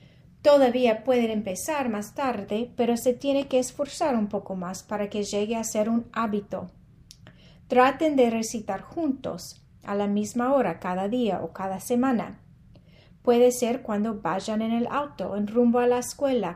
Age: 30-49